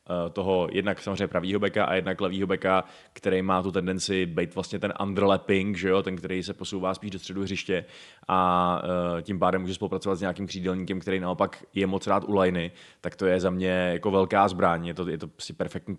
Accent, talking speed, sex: native, 205 wpm, male